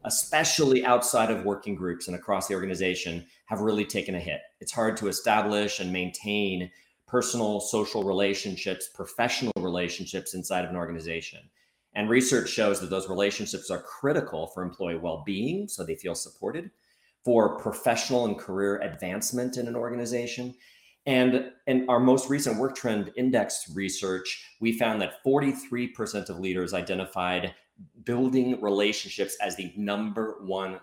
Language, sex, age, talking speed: English, male, 30-49, 145 wpm